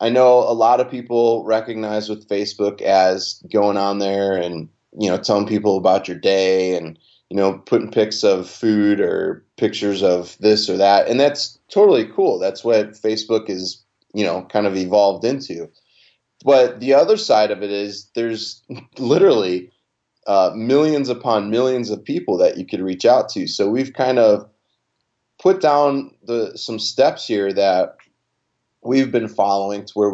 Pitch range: 100-130 Hz